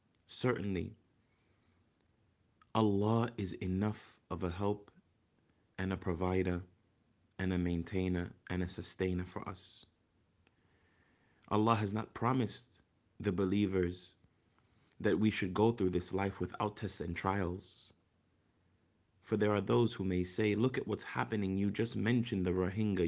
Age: 30-49